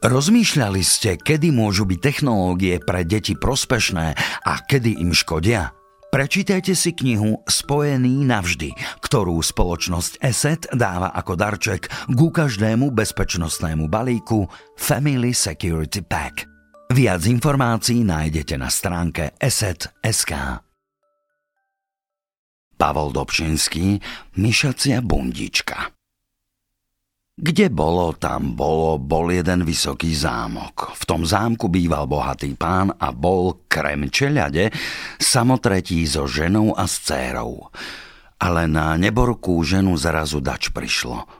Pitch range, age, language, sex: 80-120 Hz, 50-69, Slovak, male